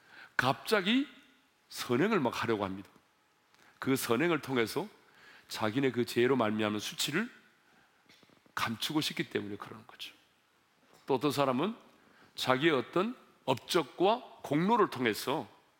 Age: 40-59